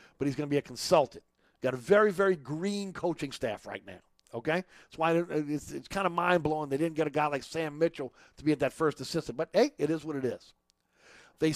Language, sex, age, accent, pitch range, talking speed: English, male, 50-69, American, 145-185 Hz, 240 wpm